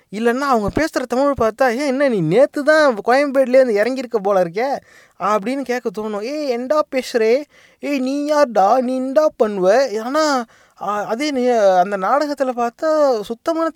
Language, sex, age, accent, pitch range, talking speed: English, male, 20-39, Indian, 180-245 Hz, 155 wpm